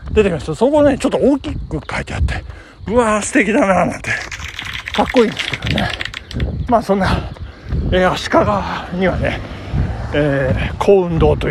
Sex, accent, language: male, native, Japanese